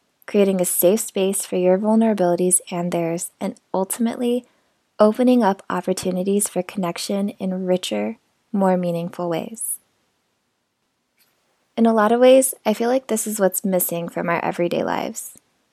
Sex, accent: female, American